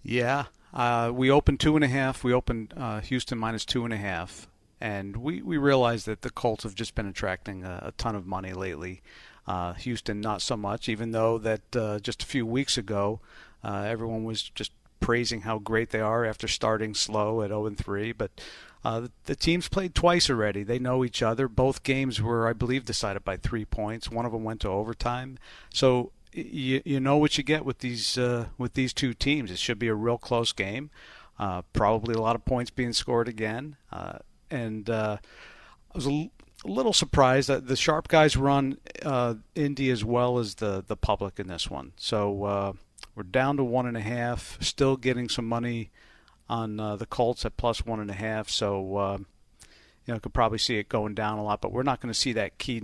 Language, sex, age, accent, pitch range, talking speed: English, male, 50-69, American, 105-130 Hz, 210 wpm